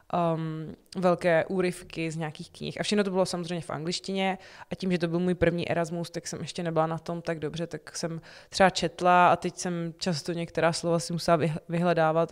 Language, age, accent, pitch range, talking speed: Czech, 20-39, native, 155-175 Hz, 200 wpm